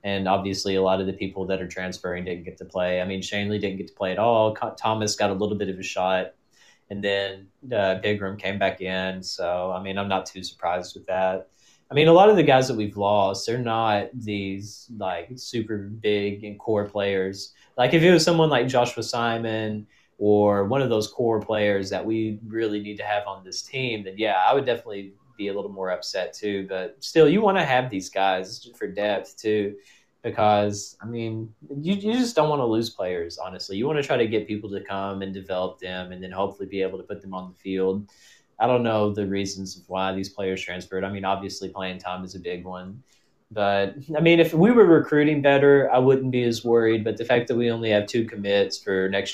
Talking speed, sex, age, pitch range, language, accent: 225 wpm, male, 20-39, 95-110 Hz, English, American